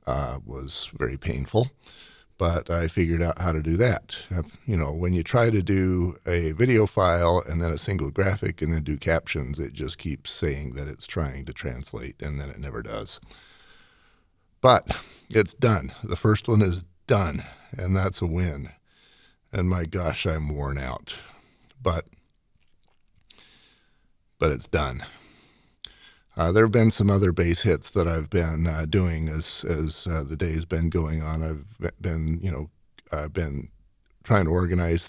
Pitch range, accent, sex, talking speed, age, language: 80-95 Hz, American, male, 170 wpm, 50-69, English